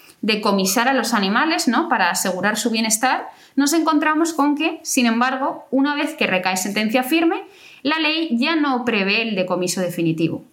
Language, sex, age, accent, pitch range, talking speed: Spanish, female, 20-39, Spanish, 195-280 Hz, 165 wpm